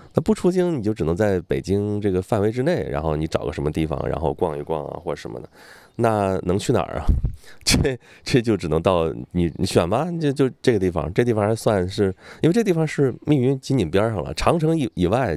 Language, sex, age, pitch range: Chinese, male, 20-39, 85-120 Hz